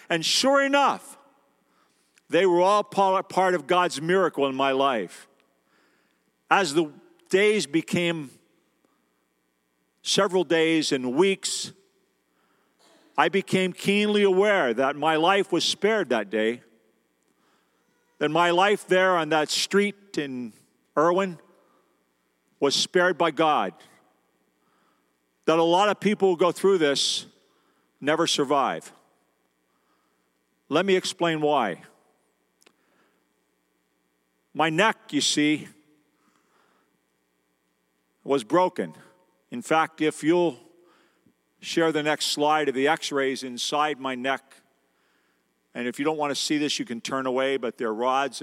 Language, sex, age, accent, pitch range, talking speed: English, male, 50-69, American, 120-180 Hz, 120 wpm